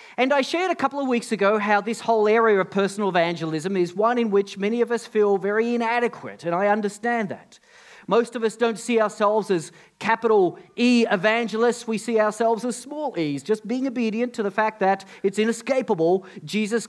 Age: 40-59